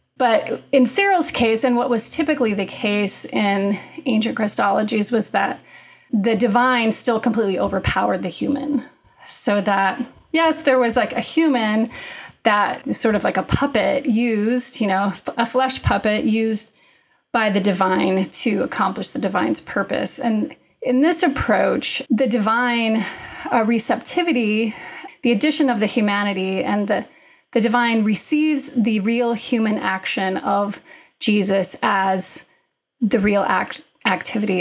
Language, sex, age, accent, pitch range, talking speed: English, female, 30-49, American, 210-255 Hz, 140 wpm